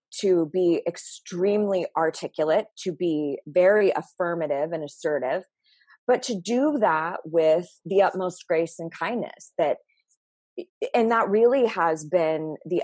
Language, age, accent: English, 20-39, American